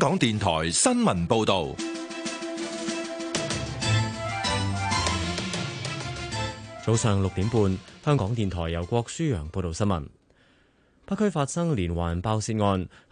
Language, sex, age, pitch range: Chinese, male, 20-39, 90-120 Hz